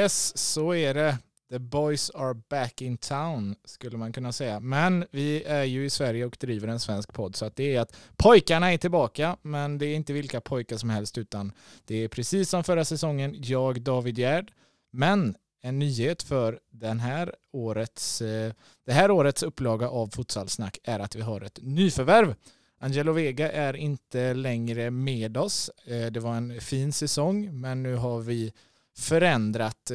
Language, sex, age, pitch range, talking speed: Swedish, male, 20-39, 110-145 Hz, 170 wpm